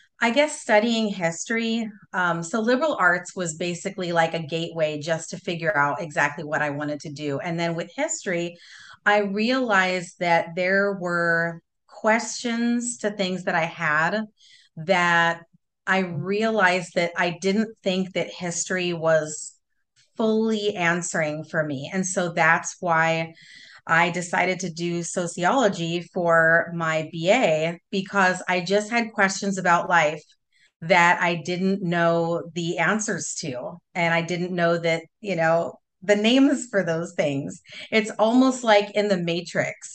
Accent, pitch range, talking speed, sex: American, 170-210 Hz, 145 wpm, female